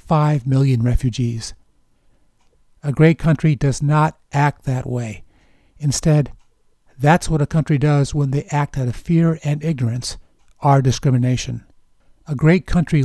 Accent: American